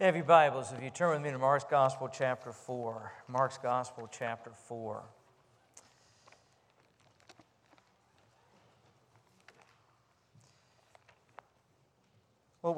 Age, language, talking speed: 50-69, English, 85 wpm